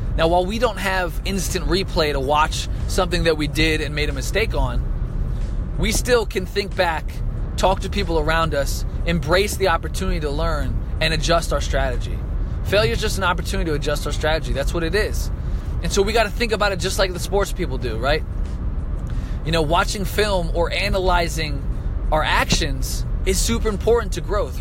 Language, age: English, 20-39